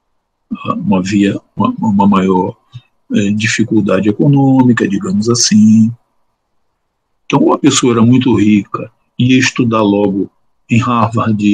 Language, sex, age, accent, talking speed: Portuguese, male, 50-69, Brazilian, 115 wpm